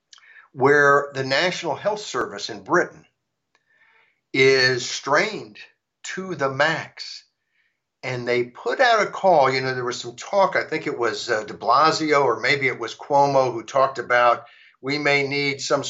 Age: 60-79